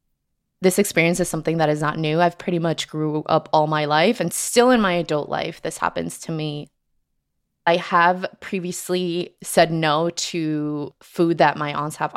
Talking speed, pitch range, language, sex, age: 180 wpm, 155-190 Hz, English, female, 20-39